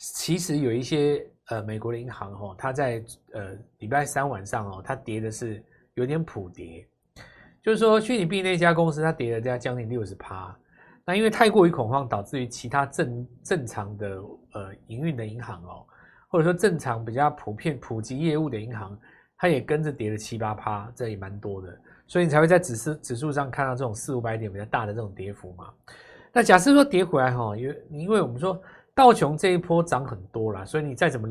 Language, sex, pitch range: Chinese, male, 110-160 Hz